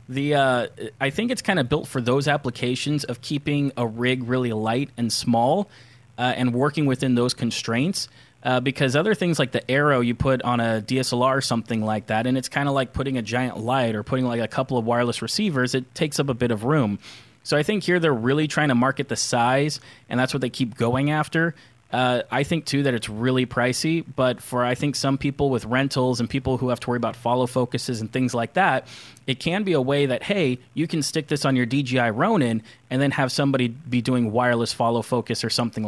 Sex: male